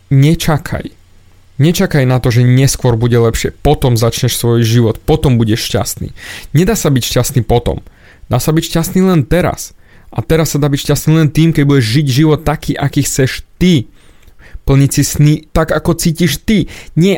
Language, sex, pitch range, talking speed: Slovak, male, 120-155 Hz, 175 wpm